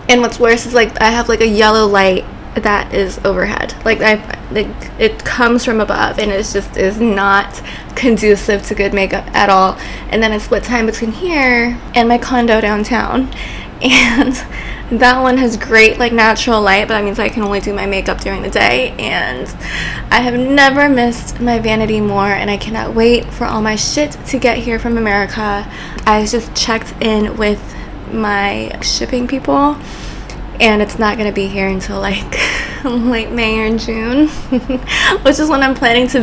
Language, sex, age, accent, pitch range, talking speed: English, female, 20-39, American, 210-245 Hz, 180 wpm